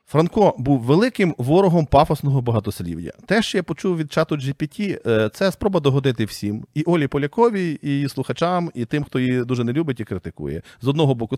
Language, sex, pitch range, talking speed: Ukrainian, male, 105-140 Hz, 180 wpm